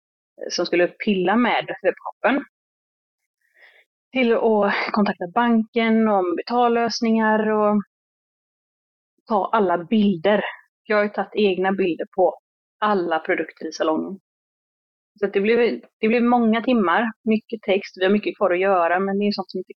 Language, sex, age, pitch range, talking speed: Swedish, female, 30-49, 190-225 Hz, 145 wpm